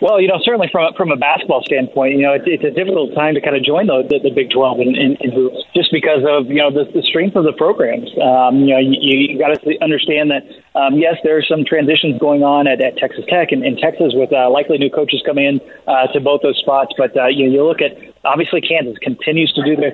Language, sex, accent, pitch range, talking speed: English, male, American, 140-165 Hz, 260 wpm